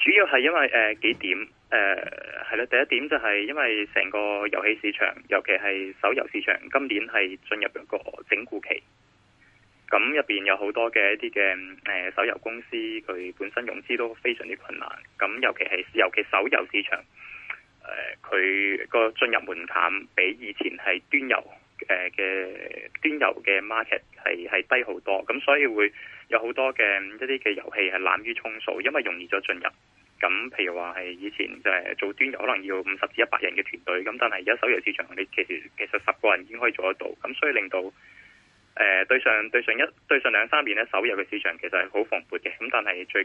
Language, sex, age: Chinese, male, 20-39